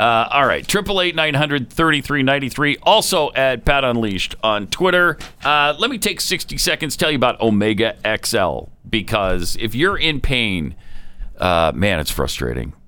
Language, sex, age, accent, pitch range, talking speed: English, male, 50-69, American, 95-140 Hz, 145 wpm